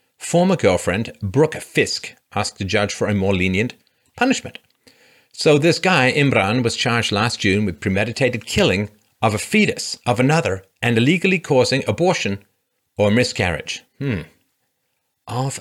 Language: English